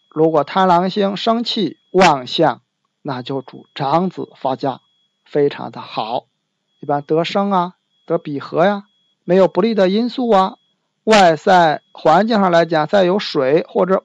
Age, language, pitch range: 50-69, Chinese, 145-205 Hz